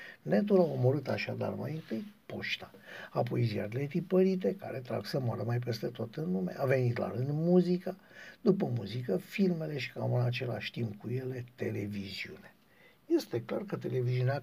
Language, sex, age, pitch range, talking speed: Romanian, male, 60-79, 120-180 Hz, 160 wpm